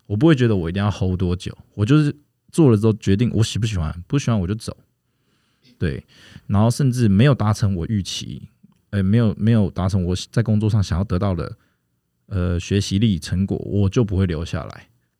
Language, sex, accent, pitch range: Chinese, male, native, 95-120 Hz